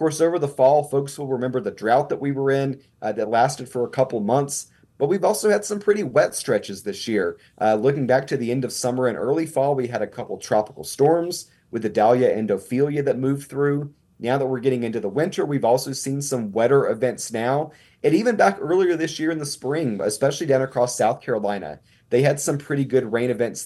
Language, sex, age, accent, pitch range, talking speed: English, male, 30-49, American, 125-155 Hz, 225 wpm